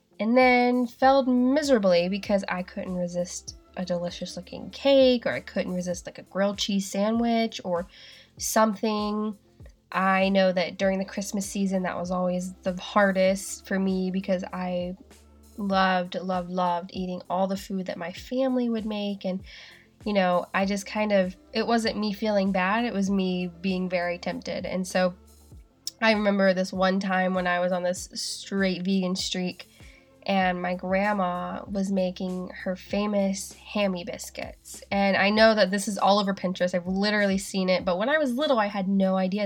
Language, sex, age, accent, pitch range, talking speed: English, female, 20-39, American, 180-205 Hz, 175 wpm